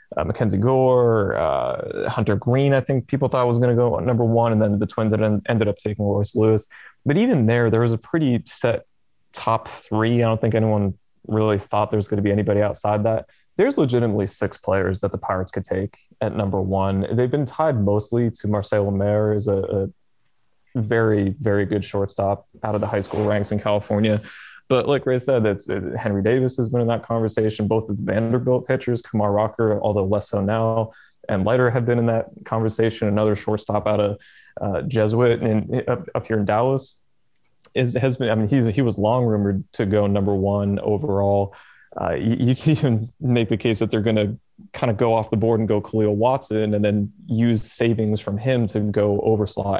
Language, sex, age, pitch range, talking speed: English, male, 20-39, 105-120 Hz, 210 wpm